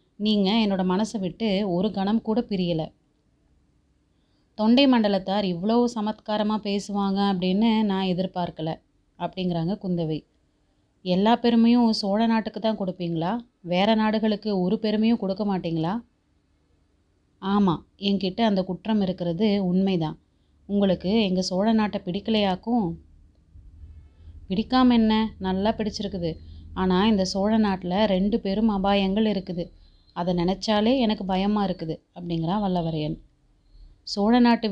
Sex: female